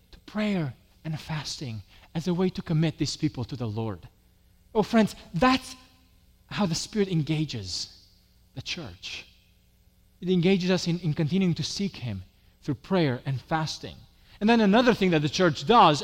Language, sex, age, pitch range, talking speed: English, male, 30-49, 135-195 Hz, 160 wpm